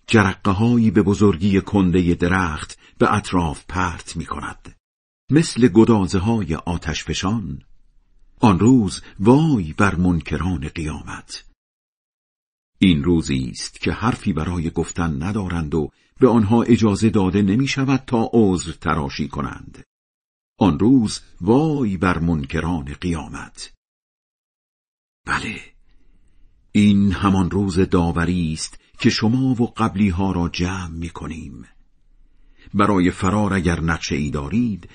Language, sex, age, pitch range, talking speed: Persian, male, 50-69, 80-110 Hz, 115 wpm